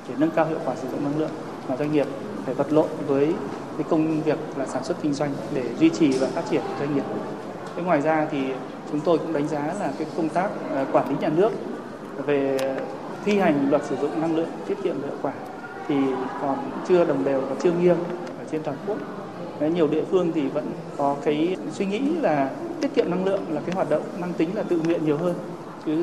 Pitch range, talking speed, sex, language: 150-180 Hz, 225 wpm, male, Vietnamese